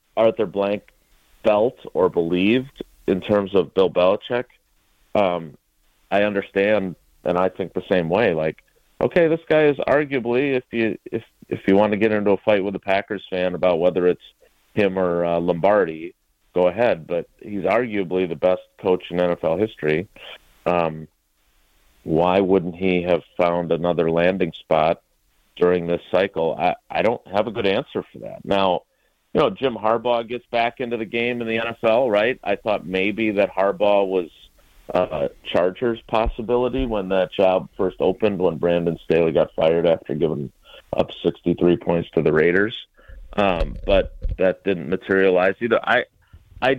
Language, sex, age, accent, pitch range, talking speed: English, male, 40-59, American, 90-110 Hz, 165 wpm